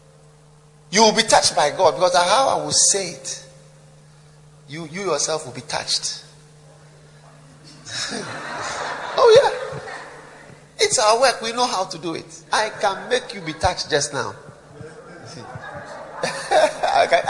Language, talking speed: English, 135 wpm